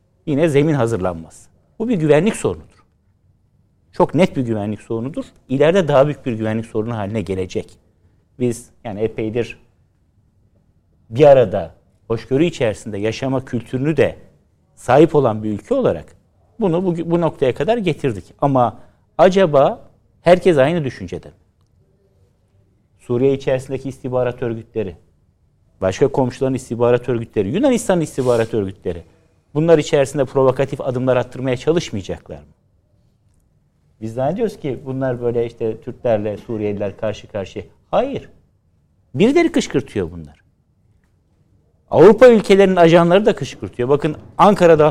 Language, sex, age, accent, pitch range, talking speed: Turkish, male, 60-79, native, 100-145 Hz, 115 wpm